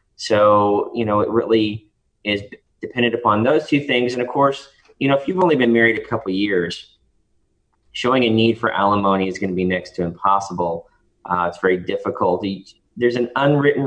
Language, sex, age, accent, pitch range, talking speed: English, male, 30-49, American, 95-115 Hz, 190 wpm